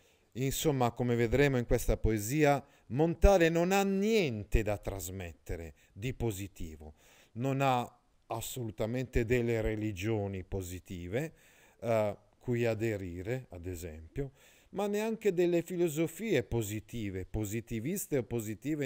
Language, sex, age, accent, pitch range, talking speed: Italian, male, 40-59, native, 110-150 Hz, 105 wpm